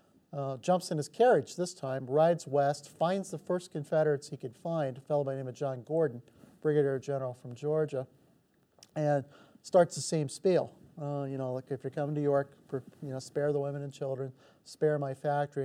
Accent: American